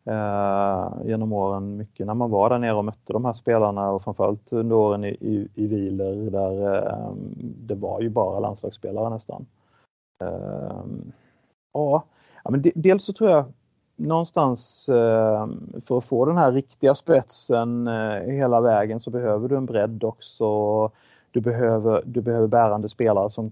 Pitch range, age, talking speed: 105-125 Hz, 30-49, 165 wpm